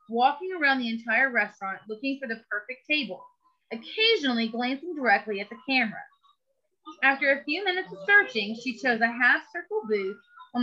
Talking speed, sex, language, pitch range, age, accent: 160 wpm, female, English, 225-325 Hz, 30-49, American